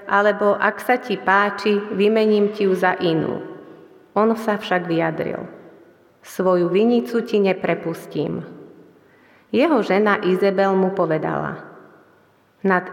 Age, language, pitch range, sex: 30-49, Slovak, 185-215 Hz, female